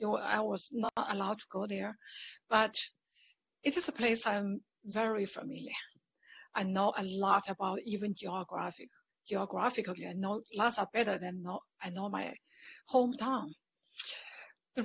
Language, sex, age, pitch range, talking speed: English, female, 50-69, 200-250 Hz, 140 wpm